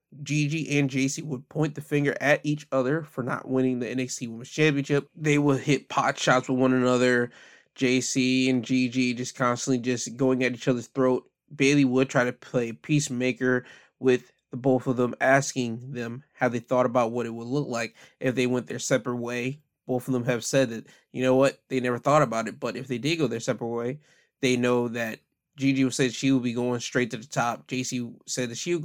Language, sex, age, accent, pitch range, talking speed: English, male, 20-39, American, 120-135 Hz, 220 wpm